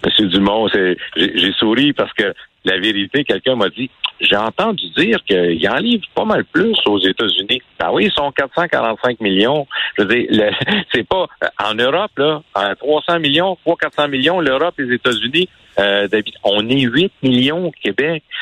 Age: 60-79